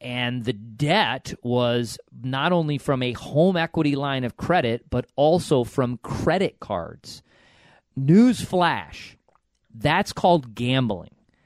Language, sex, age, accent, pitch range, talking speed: English, male, 40-59, American, 125-160 Hz, 120 wpm